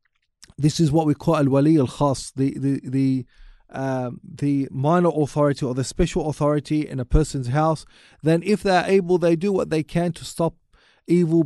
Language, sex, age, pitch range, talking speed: English, male, 30-49, 140-170 Hz, 175 wpm